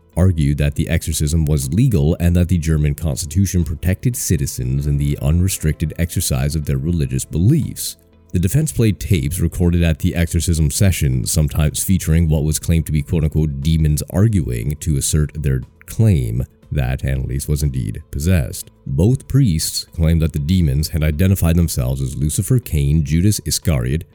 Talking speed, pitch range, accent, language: 155 wpm, 75-90 Hz, American, English